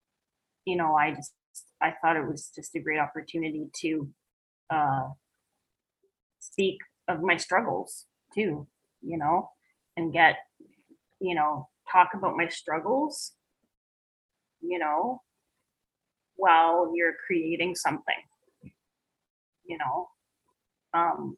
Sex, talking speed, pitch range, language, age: female, 105 wpm, 160-195 Hz, English, 30-49